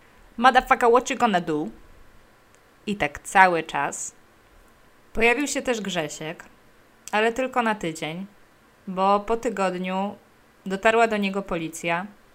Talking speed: 115 wpm